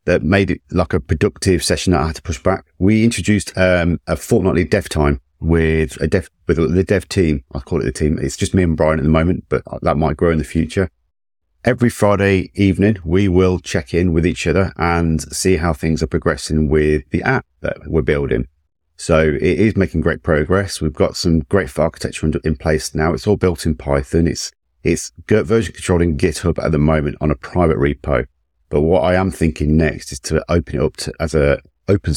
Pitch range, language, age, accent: 75-90 Hz, English, 40-59, British